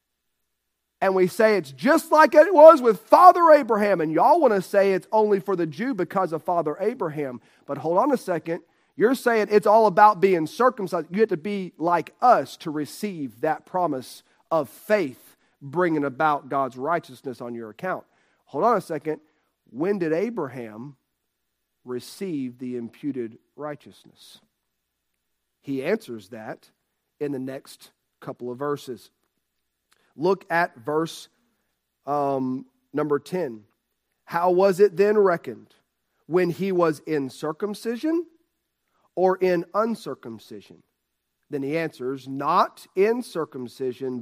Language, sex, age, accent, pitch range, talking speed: English, male, 40-59, American, 130-200 Hz, 135 wpm